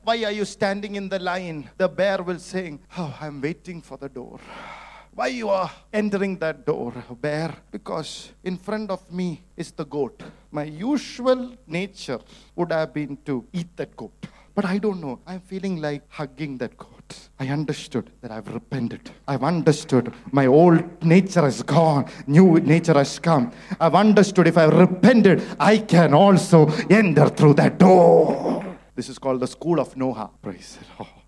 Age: 50-69